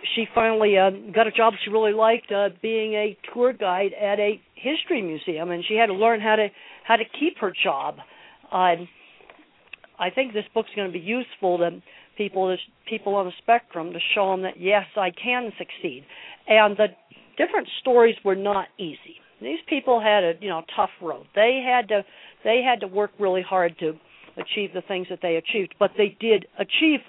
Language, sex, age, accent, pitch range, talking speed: English, female, 50-69, American, 180-220 Hz, 200 wpm